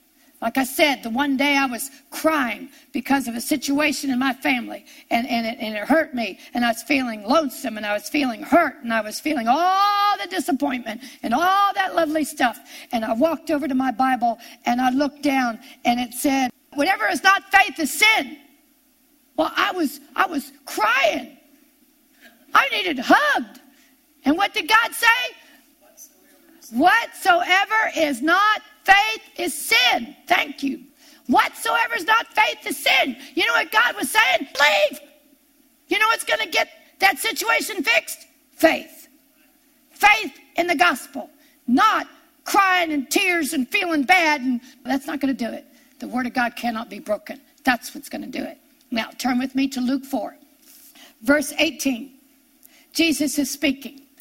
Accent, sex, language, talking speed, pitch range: American, female, English, 170 wpm, 265-320 Hz